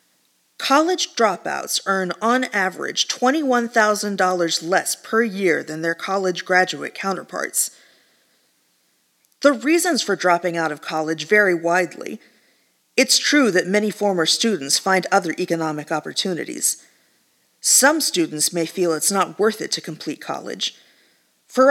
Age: 40-59